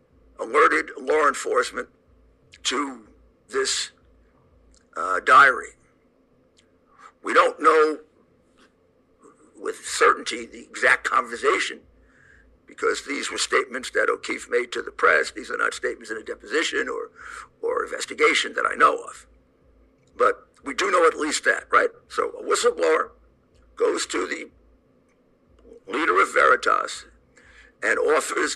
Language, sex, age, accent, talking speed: English, male, 60-79, American, 120 wpm